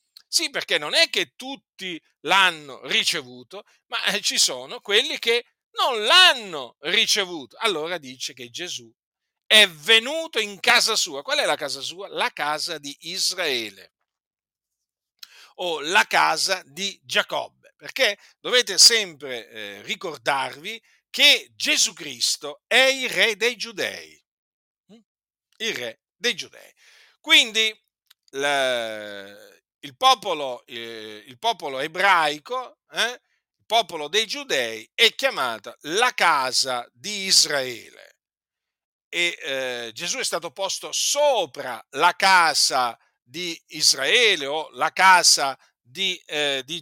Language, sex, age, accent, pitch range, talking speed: Italian, male, 50-69, native, 150-245 Hz, 115 wpm